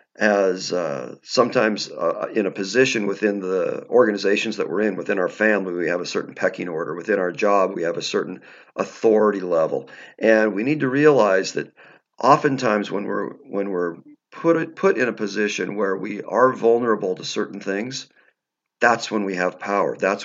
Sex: male